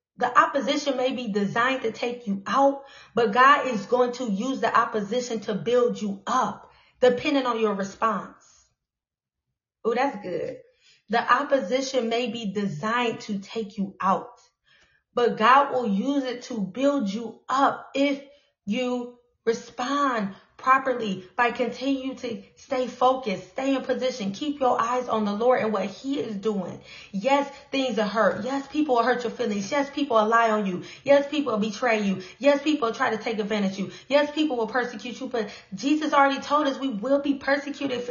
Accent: American